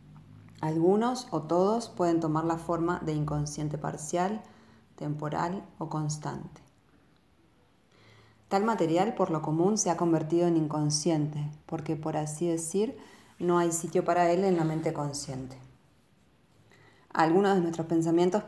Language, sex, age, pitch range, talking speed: Spanish, female, 20-39, 150-170 Hz, 130 wpm